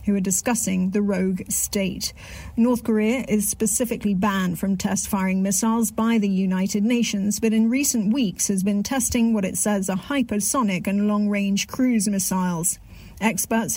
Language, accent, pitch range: English, British, 205-235 Hz